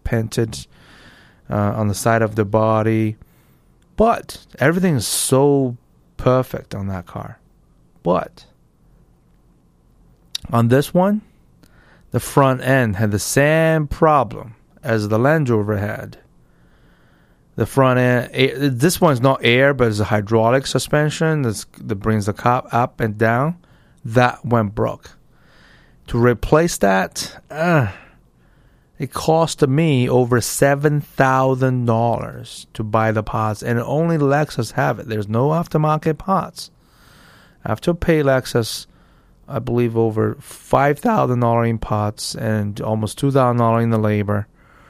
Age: 30-49